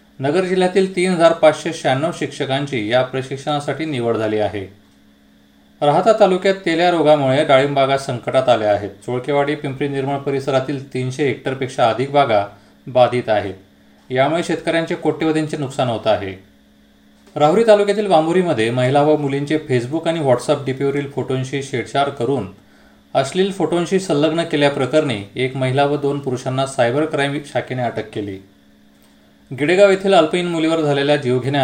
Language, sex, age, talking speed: Marathi, male, 30-49, 135 wpm